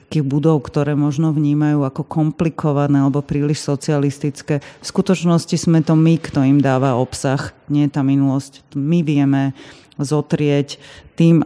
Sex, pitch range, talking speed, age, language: female, 140-160 Hz, 135 wpm, 30-49, Slovak